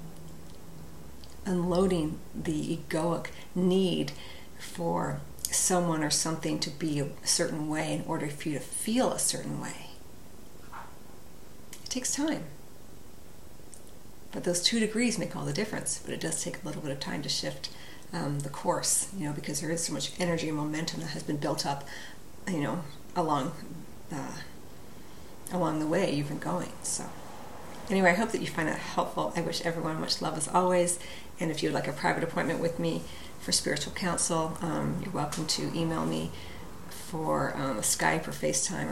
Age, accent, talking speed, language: 40-59, American, 175 wpm, English